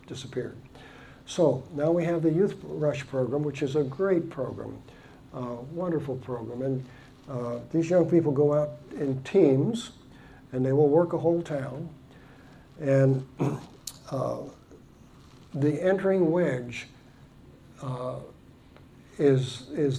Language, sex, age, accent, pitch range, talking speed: English, male, 60-79, American, 130-155 Hz, 125 wpm